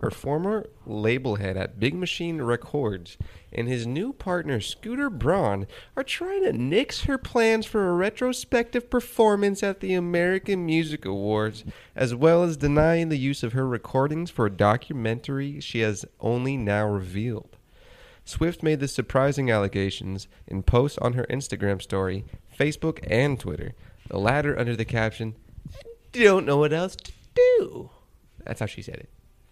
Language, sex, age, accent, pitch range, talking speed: English, male, 20-39, American, 100-145 Hz, 155 wpm